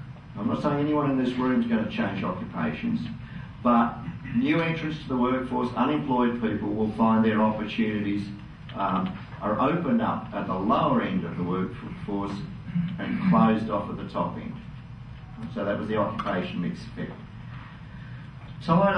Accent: Australian